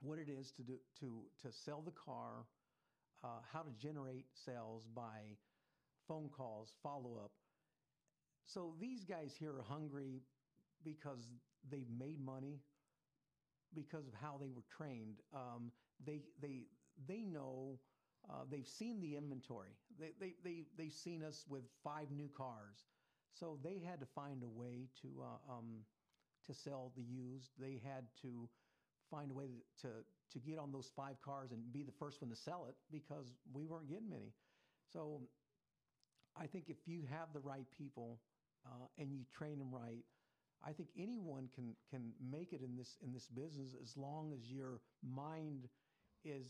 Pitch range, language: 125-155 Hz, English